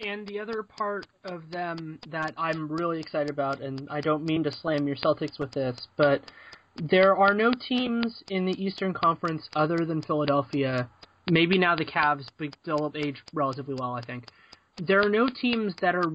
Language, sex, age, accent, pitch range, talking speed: English, male, 20-39, American, 145-185 Hz, 185 wpm